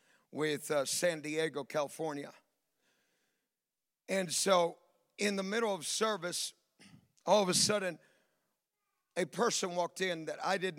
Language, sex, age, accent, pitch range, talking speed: English, male, 50-69, American, 165-195 Hz, 130 wpm